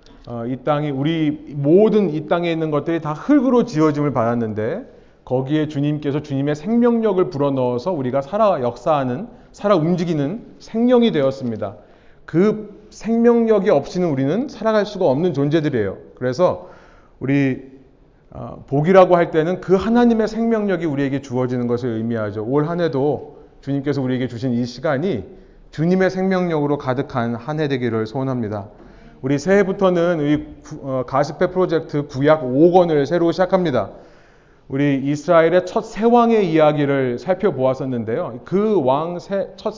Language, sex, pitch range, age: Korean, male, 135-185 Hz, 30-49